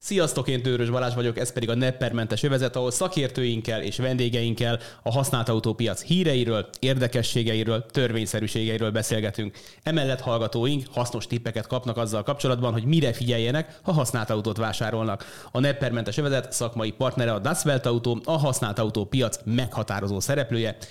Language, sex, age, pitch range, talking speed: Hungarian, male, 30-49, 110-135 Hz, 140 wpm